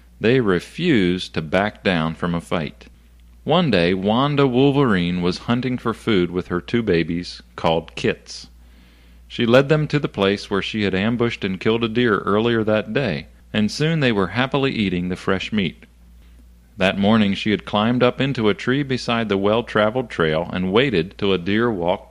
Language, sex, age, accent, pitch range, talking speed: English, male, 40-59, American, 85-115 Hz, 180 wpm